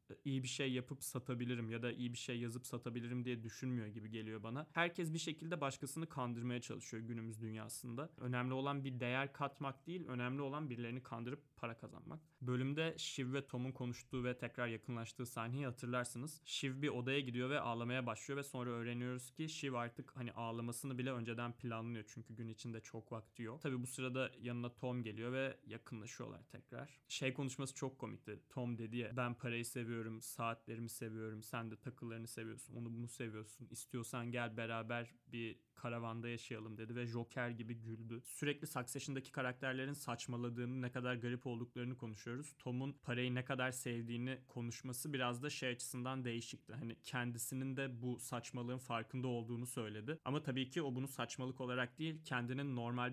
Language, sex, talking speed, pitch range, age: Turkish, male, 165 wpm, 120-135 Hz, 20-39